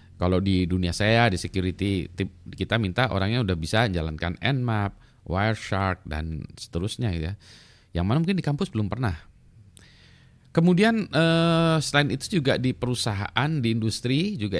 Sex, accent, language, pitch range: male, native, Indonesian, 90-125 Hz